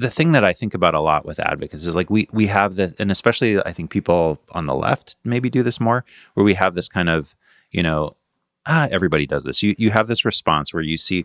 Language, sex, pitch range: English, male, 80-105 Hz